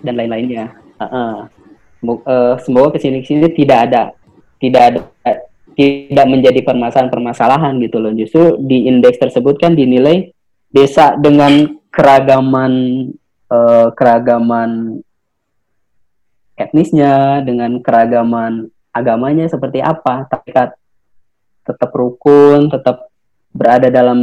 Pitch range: 120-145 Hz